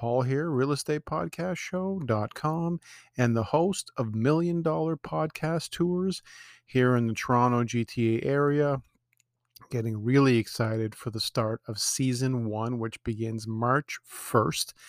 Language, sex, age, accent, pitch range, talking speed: English, male, 40-59, American, 120-145 Hz, 120 wpm